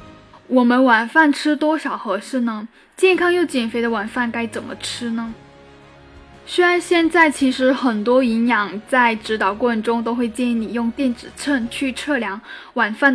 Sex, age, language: female, 10-29, Chinese